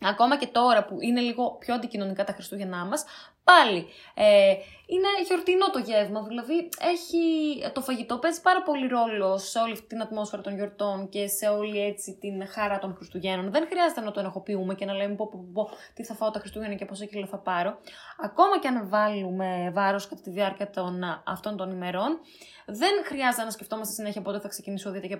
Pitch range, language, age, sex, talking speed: 200-260 Hz, Greek, 20-39, female, 190 wpm